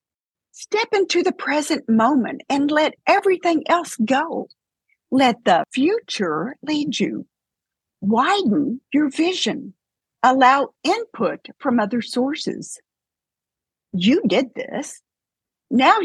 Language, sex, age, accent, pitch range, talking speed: English, female, 50-69, American, 225-305 Hz, 100 wpm